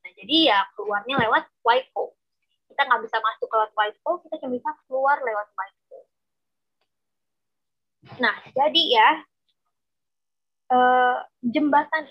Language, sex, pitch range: Indonesian, female, 230-325 Hz